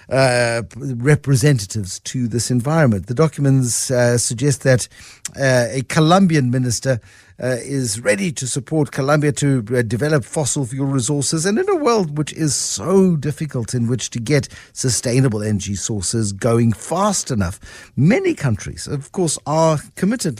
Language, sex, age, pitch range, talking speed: English, male, 60-79, 115-150 Hz, 145 wpm